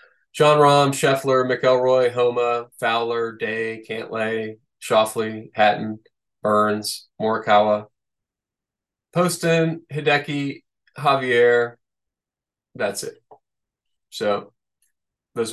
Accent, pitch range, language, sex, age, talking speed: American, 110-140 Hz, English, male, 20-39, 75 wpm